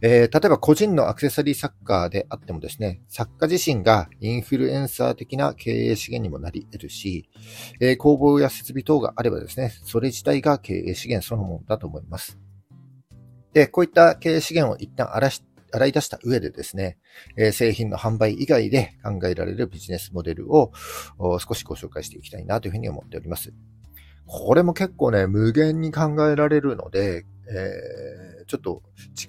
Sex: male